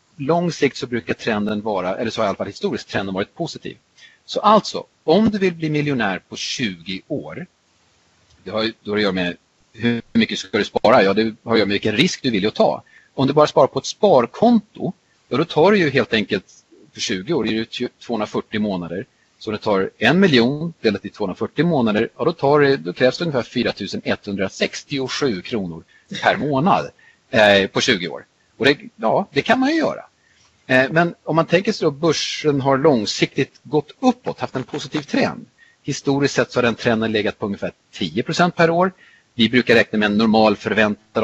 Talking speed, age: 205 wpm, 40-59